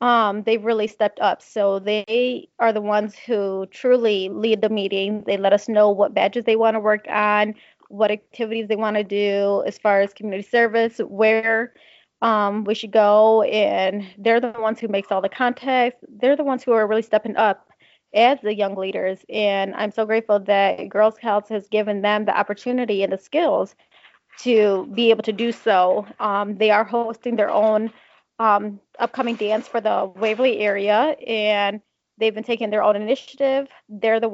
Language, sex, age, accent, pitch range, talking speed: English, female, 20-39, American, 210-240 Hz, 185 wpm